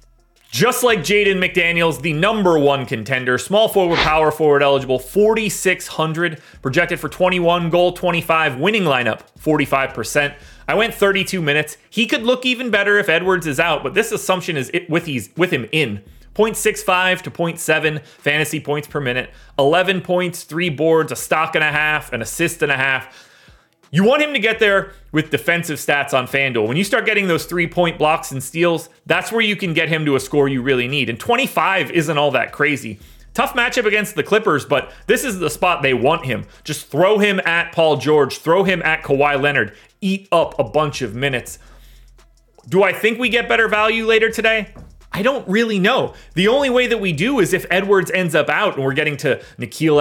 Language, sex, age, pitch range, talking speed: English, male, 30-49, 140-190 Hz, 200 wpm